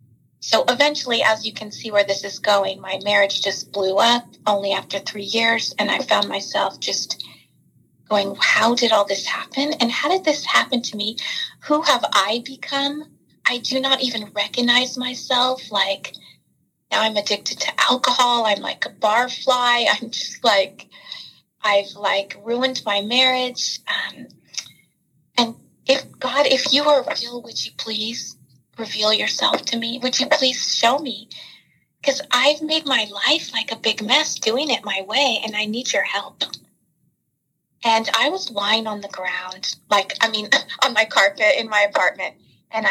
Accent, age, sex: American, 30-49, female